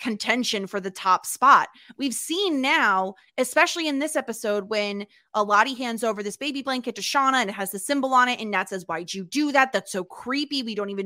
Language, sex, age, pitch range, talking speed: English, female, 20-39, 200-265 Hz, 220 wpm